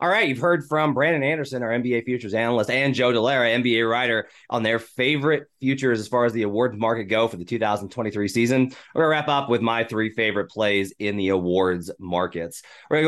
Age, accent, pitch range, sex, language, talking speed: 30-49, American, 105-135 Hz, male, English, 215 wpm